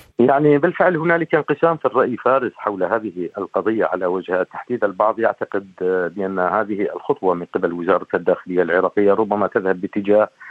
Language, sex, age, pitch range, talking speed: Arabic, male, 50-69, 95-120 Hz, 150 wpm